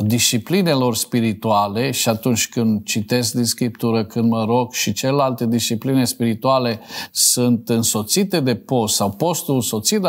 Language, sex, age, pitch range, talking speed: Romanian, male, 50-69, 115-145 Hz, 130 wpm